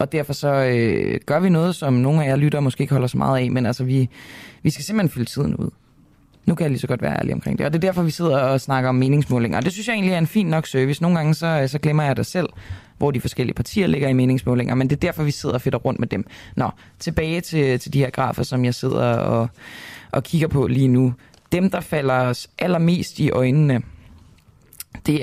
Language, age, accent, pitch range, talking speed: Danish, 20-39, native, 125-155 Hz, 250 wpm